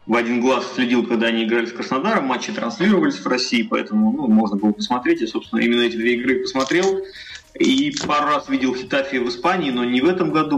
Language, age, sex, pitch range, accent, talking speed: Russian, 20-39, male, 115-180 Hz, native, 210 wpm